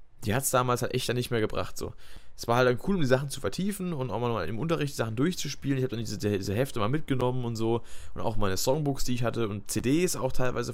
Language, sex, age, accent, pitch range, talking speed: German, male, 20-39, German, 100-130 Hz, 280 wpm